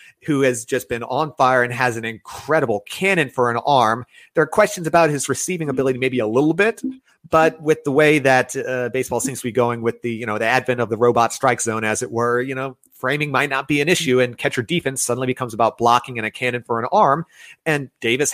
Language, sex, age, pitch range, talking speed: English, male, 30-49, 120-150 Hz, 240 wpm